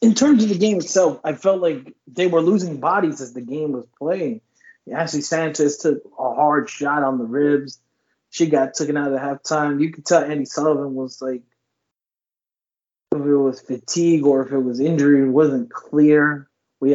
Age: 30-49